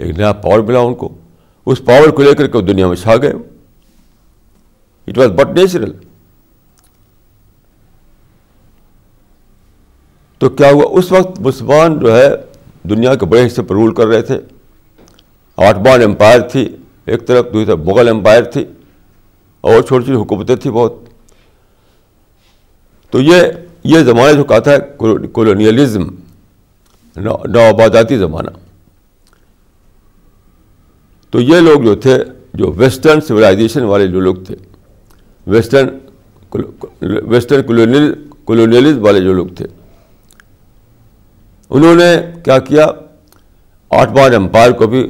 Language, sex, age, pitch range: Urdu, male, 60-79, 95-135 Hz